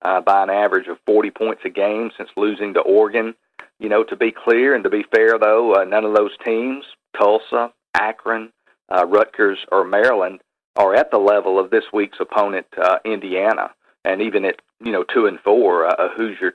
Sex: male